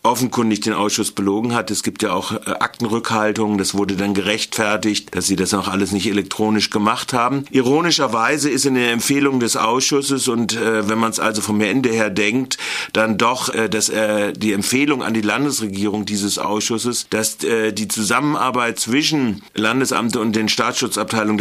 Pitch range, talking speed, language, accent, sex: 105-125 Hz, 175 wpm, German, German, male